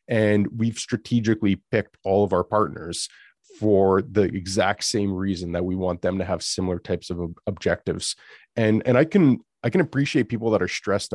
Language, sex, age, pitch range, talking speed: English, male, 30-49, 95-110 Hz, 185 wpm